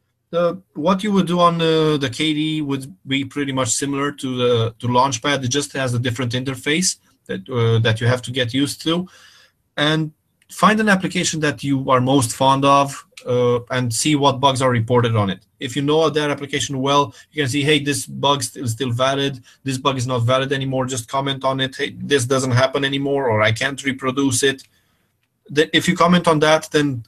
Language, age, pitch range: English, 20-39, 125-150 Hz